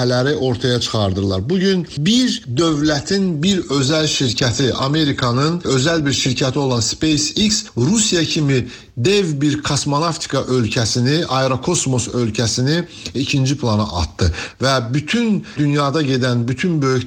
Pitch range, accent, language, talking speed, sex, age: 125-155 Hz, native, Turkish, 110 wpm, male, 60-79